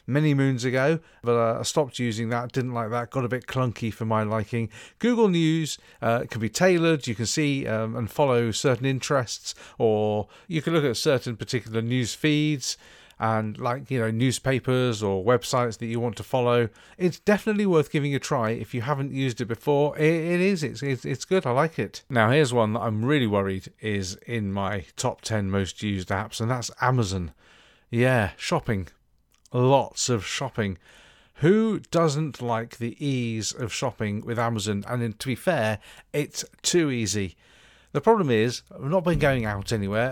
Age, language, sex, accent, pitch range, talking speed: 40-59, English, male, British, 110-145 Hz, 185 wpm